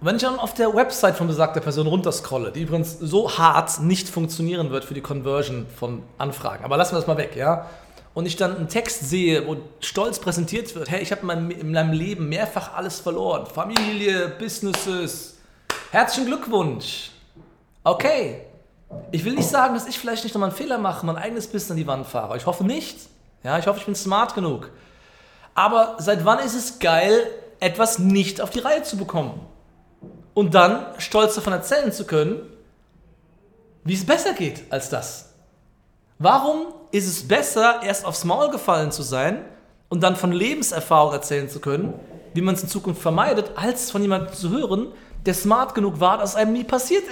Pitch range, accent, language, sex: 160-220 Hz, German, German, male